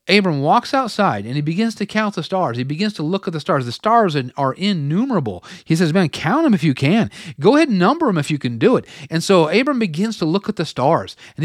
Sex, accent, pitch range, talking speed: male, American, 140-195 Hz, 255 wpm